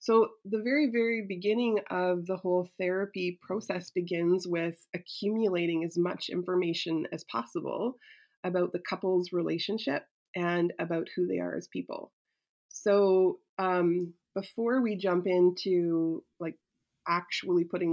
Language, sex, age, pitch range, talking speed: English, female, 20-39, 170-195 Hz, 125 wpm